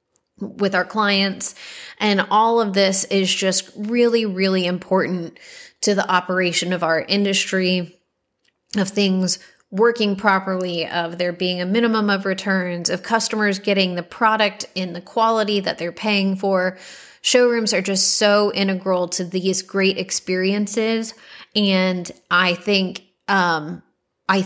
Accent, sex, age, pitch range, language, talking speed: American, female, 30-49, 180-200 Hz, English, 135 wpm